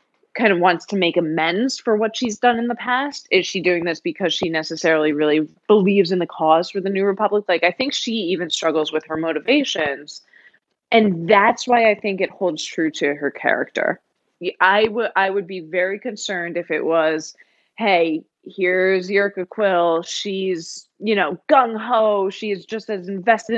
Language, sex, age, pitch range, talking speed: English, female, 20-39, 170-215 Hz, 185 wpm